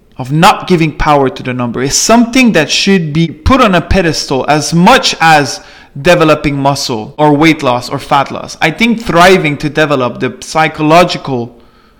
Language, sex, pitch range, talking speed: English, male, 125-165 Hz, 170 wpm